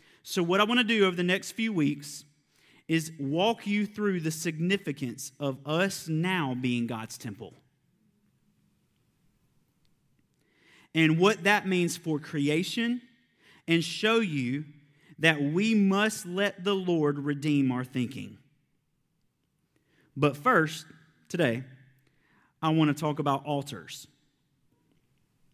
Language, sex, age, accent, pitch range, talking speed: English, male, 30-49, American, 140-180 Hz, 120 wpm